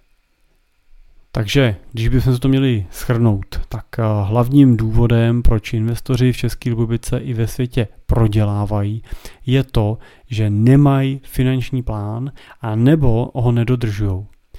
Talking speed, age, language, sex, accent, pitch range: 120 wpm, 30-49, Czech, male, native, 115-135 Hz